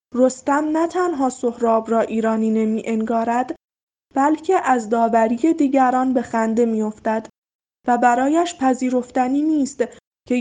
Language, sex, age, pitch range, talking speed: Persian, female, 10-29, 235-285 Hz, 110 wpm